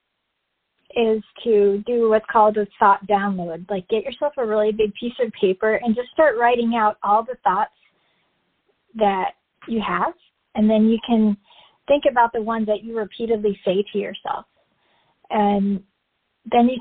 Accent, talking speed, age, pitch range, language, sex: American, 160 wpm, 40-59, 200-230 Hz, English, female